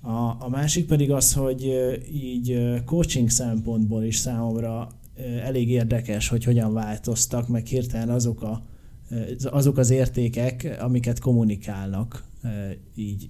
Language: Hungarian